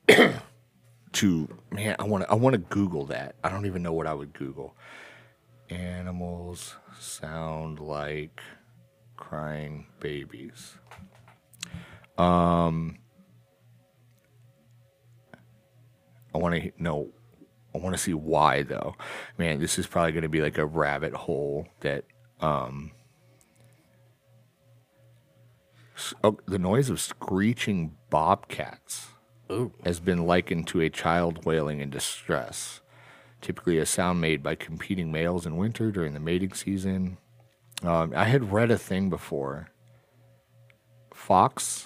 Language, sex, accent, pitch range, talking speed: English, male, American, 75-110 Hz, 120 wpm